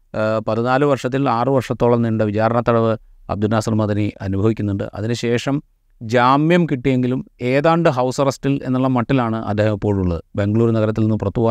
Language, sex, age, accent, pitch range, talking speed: Malayalam, male, 30-49, native, 105-135 Hz, 130 wpm